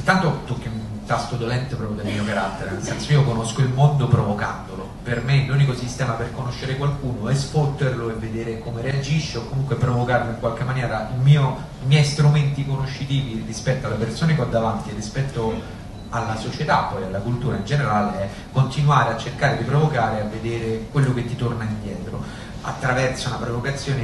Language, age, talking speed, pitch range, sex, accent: Italian, 30-49, 180 wpm, 110-130 Hz, male, native